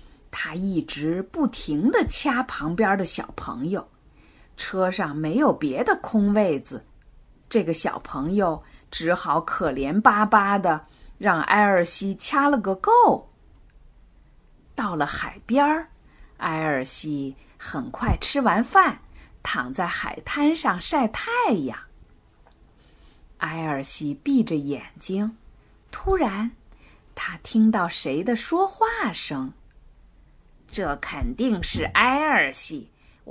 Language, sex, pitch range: Chinese, female, 175-270 Hz